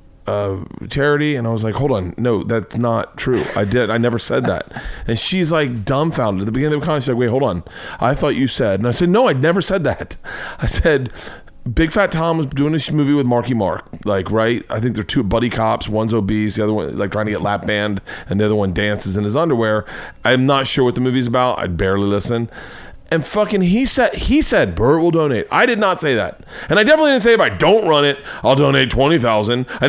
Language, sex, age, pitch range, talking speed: English, male, 30-49, 110-170 Hz, 245 wpm